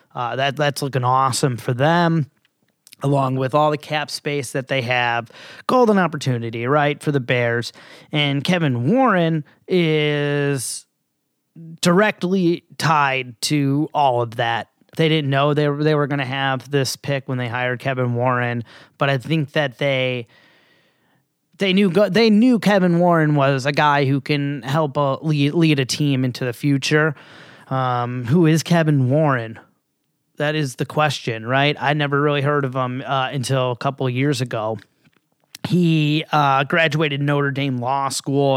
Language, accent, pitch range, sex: English, American, 135-160 Hz, male